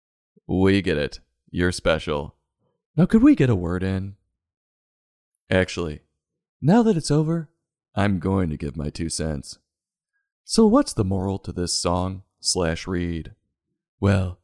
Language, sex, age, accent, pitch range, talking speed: English, male, 30-49, American, 85-100 Hz, 140 wpm